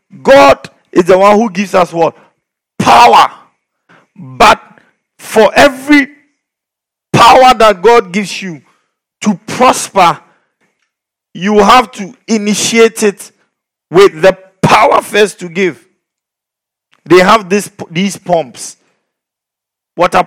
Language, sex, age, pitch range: English, male, 50-69, 160-220 Hz